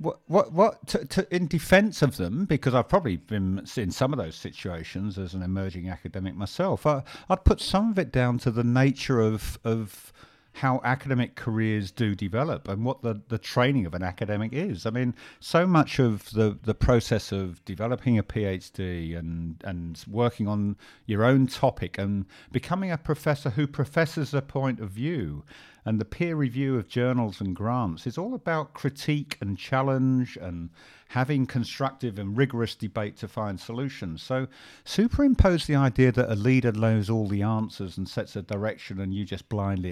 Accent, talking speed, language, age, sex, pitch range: British, 180 wpm, English, 50-69, male, 100-135 Hz